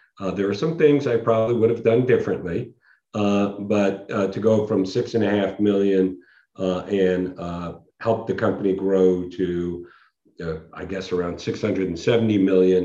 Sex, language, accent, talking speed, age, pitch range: male, English, American, 170 wpm, 50-69, 95-105 Hz